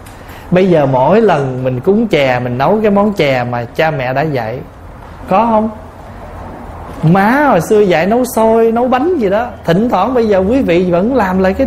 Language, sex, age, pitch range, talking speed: Vietnamese, male, 20-39, 125-210 Hz, 200 wpm